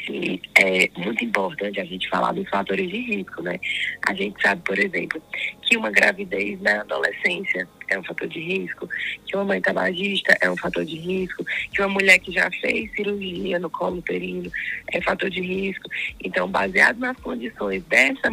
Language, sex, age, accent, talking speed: Portuguese, female, 20-39, Brazilian, 180 wpm